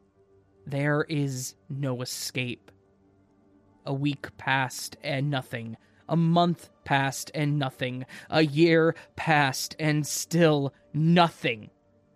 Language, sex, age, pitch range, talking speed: English, male, 20-39, 125-160 Hz, 100 wpm